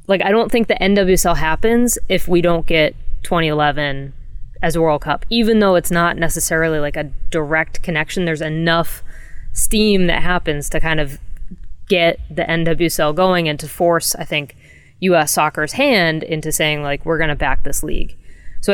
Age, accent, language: 20-39, American, English